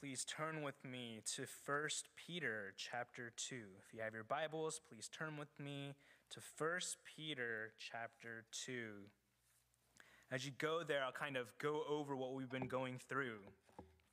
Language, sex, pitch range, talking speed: English, male, 120-155 Hz, 155 wpm